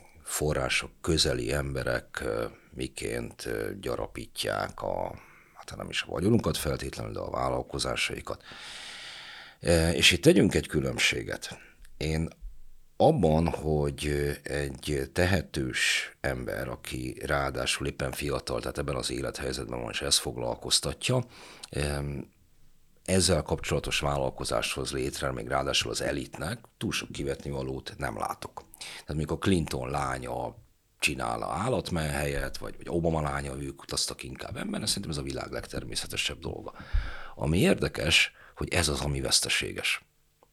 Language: Hungarian